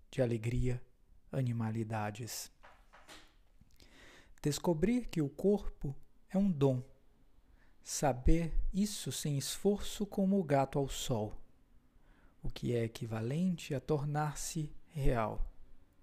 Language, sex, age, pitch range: Portuguese, male, 50-69, 125-160 Hz